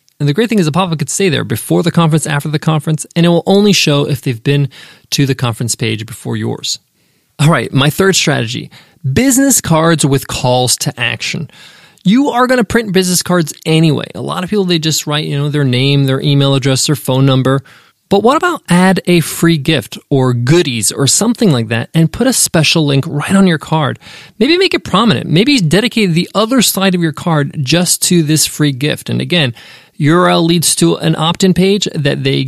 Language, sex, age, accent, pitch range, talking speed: English, male, 20-39, American, 145-190 Hz, 210 wpm